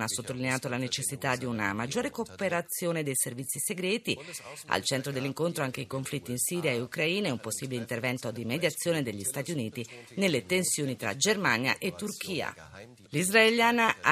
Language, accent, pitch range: Italian, native, 130-180 Hz